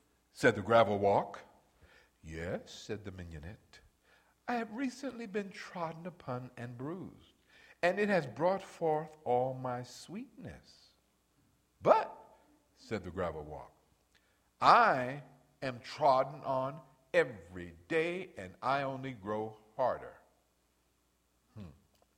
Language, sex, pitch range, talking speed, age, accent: English, male, 95-150 Hz, 110 wpm, 60-79, American